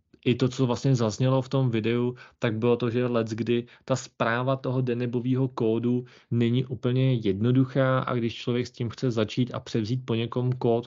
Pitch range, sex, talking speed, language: 110-125 Hz, male, 180 wpm, Czech